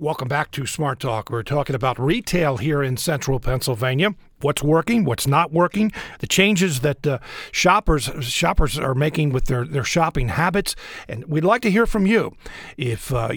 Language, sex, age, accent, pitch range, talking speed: English, male, 50-69, American, 130-170 Hz, 180 wpm